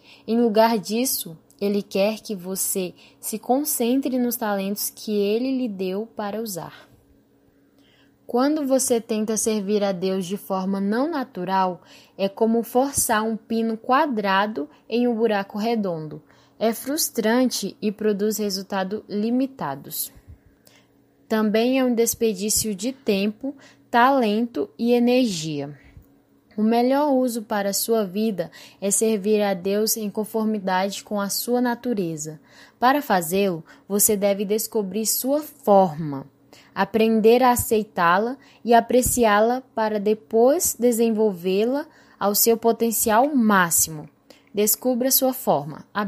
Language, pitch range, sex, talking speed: Portuguese, 200-245 Hz, female, 120 wpm